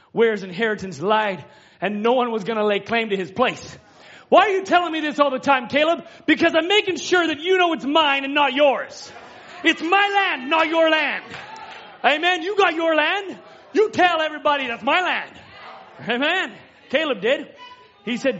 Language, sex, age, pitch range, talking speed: English, male, 30-49, 240-330 Hz, 190 wpm